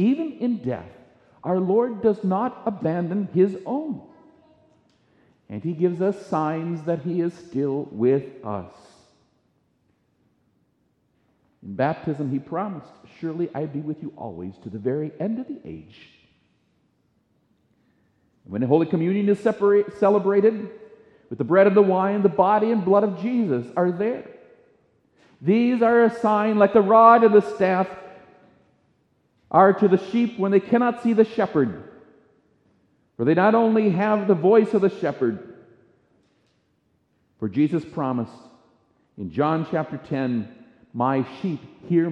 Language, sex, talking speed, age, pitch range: English, male, 140 wpm, 50-69, 140-205 Hz